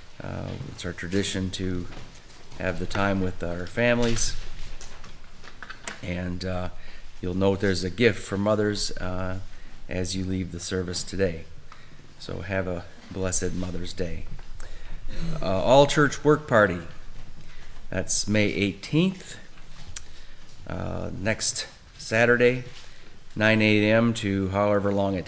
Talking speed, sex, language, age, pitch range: 120 wpm, male, English, 30-49, 95-115 Hz